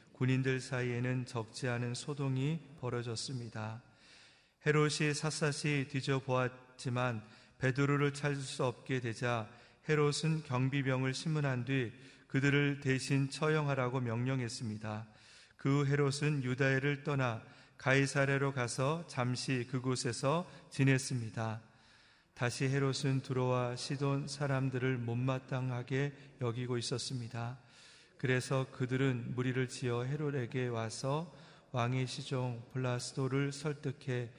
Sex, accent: male, native